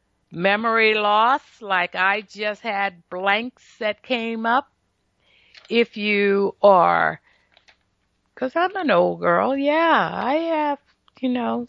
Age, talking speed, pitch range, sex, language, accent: 50-69, 120 wpm, 195-260 Hz, female, English, American